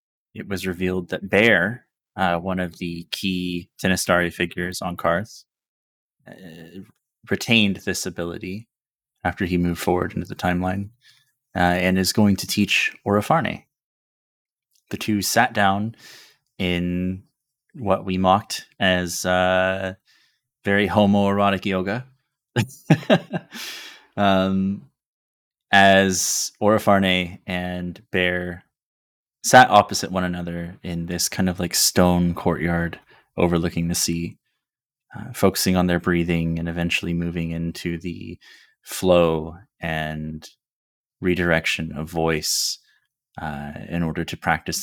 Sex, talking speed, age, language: male, 110 wpm, 20-39, English